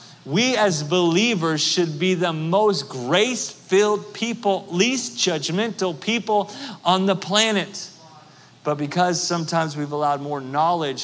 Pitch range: 130-165 Hz